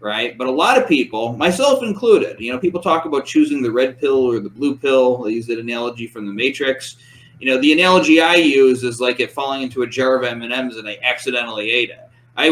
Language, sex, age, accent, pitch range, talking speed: English, male, 20-39, American, 120-155 Hz, 235 wpm